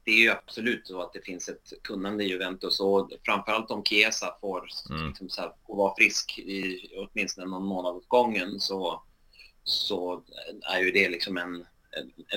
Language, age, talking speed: Swedish, 30-49, 180 wpm